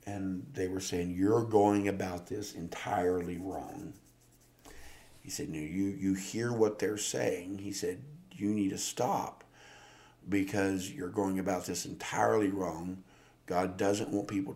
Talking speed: 150 wpm